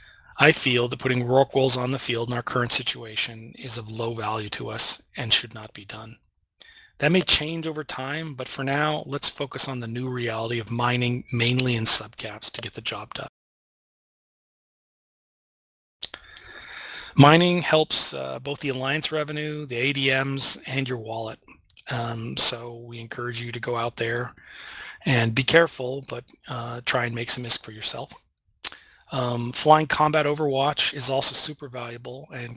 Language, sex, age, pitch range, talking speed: English, male, 30-49, 115-135 Hz, 165 wpm